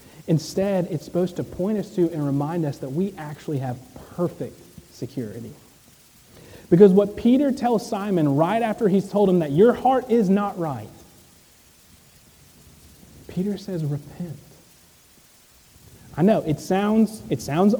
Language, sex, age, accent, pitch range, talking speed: English, male, 30-49, American, 150-205 Hz, 140 wpm